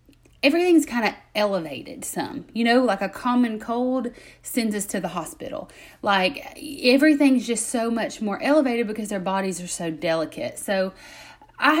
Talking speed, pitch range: 160 wpm, 190-240 Hz